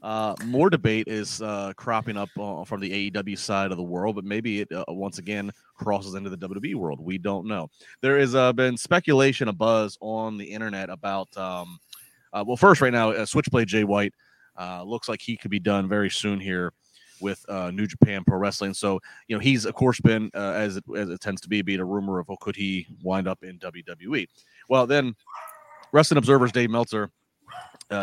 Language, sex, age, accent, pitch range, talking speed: English, male, 30-49, American, 95-120 Hz, 210 wpm